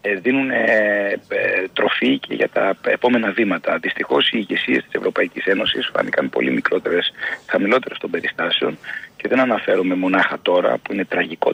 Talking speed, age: 140 wpm, 40-59